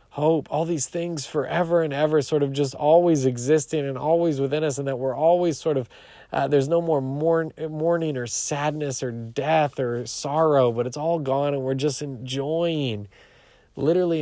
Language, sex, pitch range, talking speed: English, male, 105-140 Hz, 175 wpm